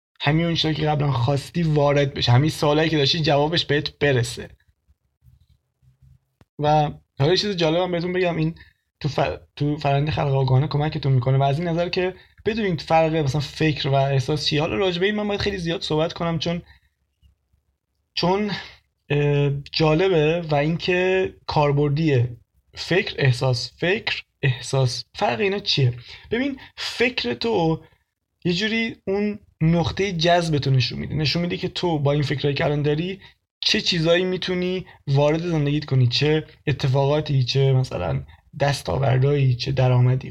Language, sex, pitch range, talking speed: Persian, male, 130-165 Hz, 140 wpm